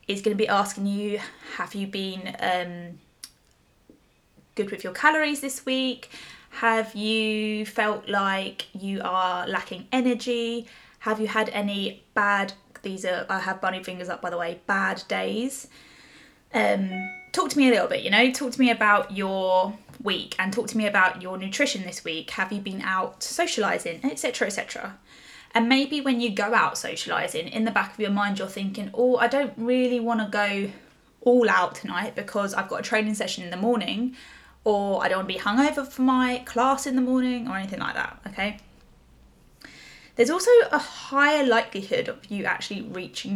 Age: 20-39